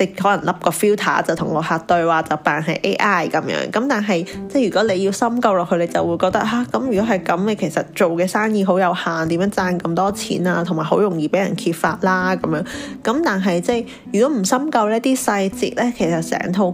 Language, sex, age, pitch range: Chinese, female, 20-39, 175-215 Hz